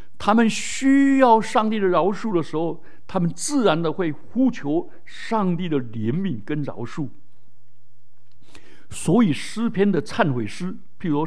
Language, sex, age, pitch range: Chinese, male, 60-79, 145-235 Hz